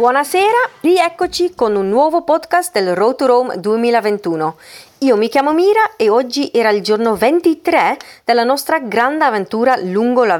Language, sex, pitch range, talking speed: Italian, female, 200-280 Hz, 160 wpm